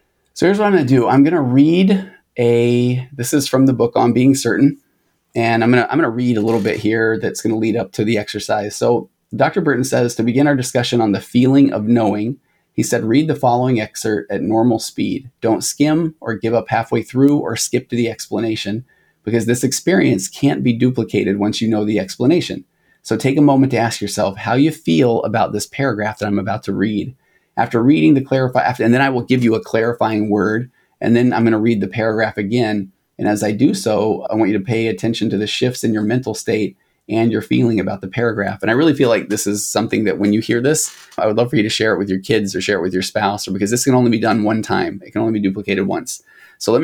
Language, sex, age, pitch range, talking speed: English, male, 30-49, 105-125 Hz, 250 wpm